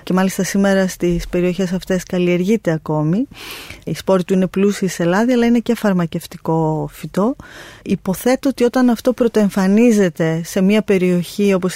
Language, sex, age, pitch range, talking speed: Greek, female, 20-39, 175-210 Hz, 150 wpm